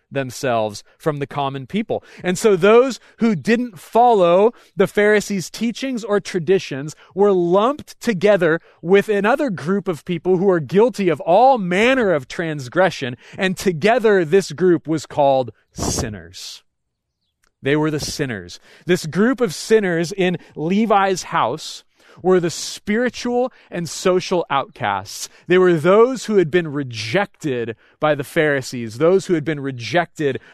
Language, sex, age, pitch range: English, male, 30-49, 150-210 Hz